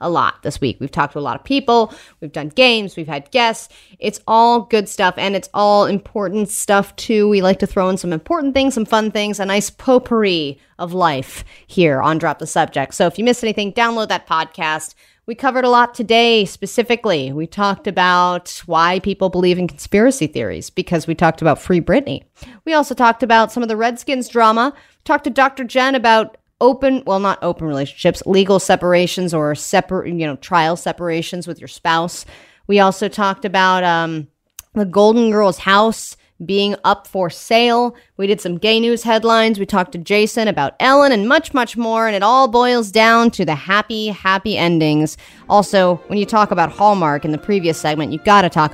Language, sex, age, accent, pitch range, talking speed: English, female, 30-49, American, 170-230 Hz, 195 wpm